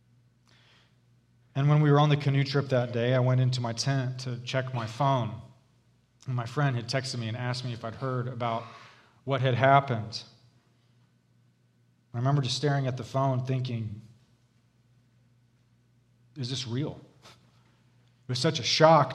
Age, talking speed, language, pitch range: 40-59, 160 wpm, English, 120-145 Hz